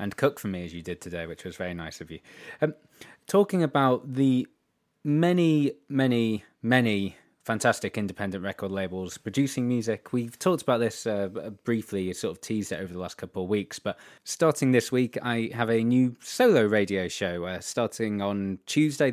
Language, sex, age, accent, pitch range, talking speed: English, male, 20-39, British, 100-125 Hz, 180 wpm